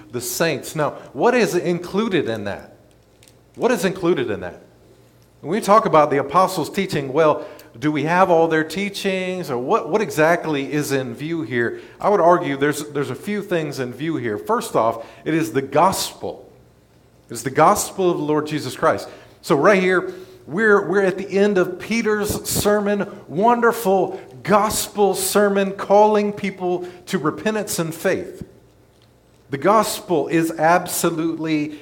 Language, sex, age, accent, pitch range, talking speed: English, male, 50-69, American, 135-185 Hz, 160 wpm